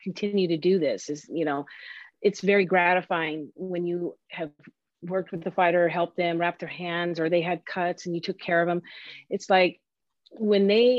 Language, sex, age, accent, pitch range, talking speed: English, female, 40-59, American, 165-195 Hz, 195 wpm